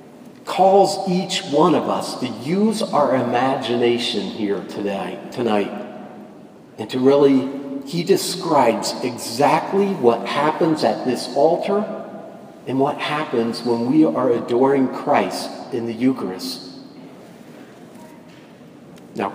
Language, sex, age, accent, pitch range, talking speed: English, male, 50-69, American, 120-170 Hz, 110 wpm